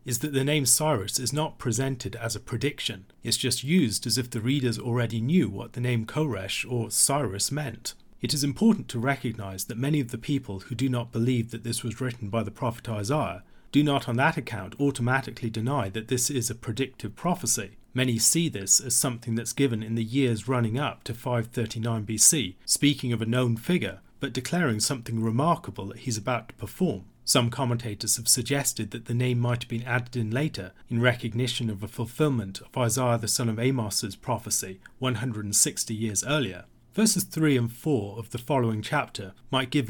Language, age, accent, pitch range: English, 40-59, British, 115-135 Hz